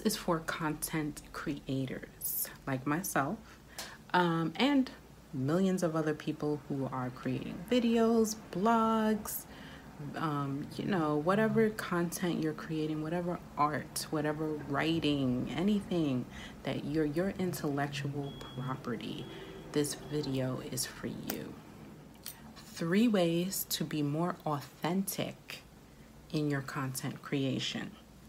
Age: 30-49